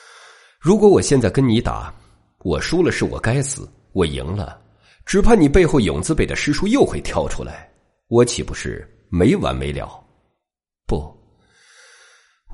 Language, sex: Chinese, male